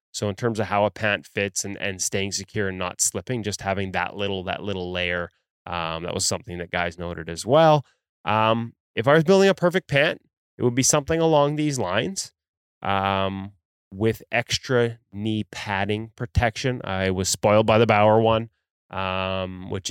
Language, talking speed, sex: English, 180 wpm, male